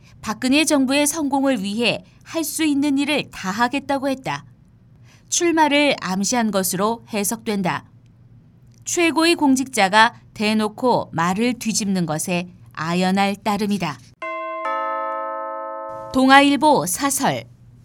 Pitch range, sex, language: 175-275 Hz, female, Korean